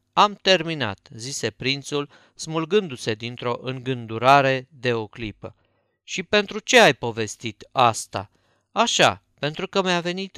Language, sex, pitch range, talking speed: Romanian, male, 120-170 Hz, 120 wpm